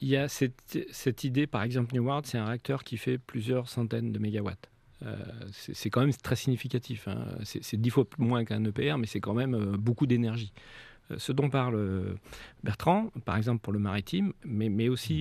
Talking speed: 210 wpm